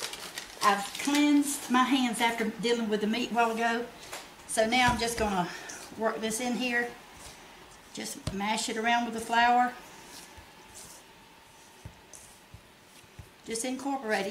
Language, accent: English, American